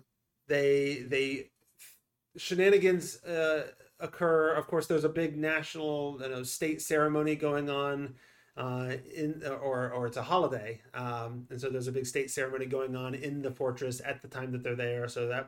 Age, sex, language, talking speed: 30-49, male, English, 175 wpm